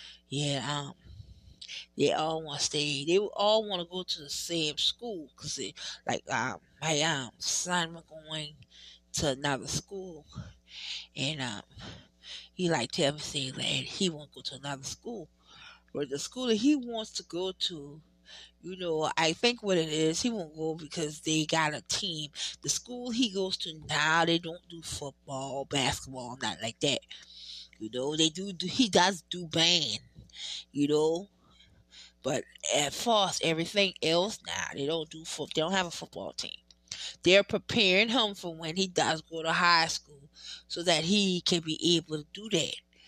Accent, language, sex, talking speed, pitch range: American, English, female, 175 wpm, 145-180 Hz